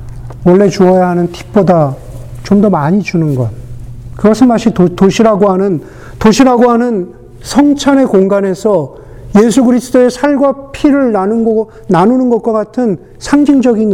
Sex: male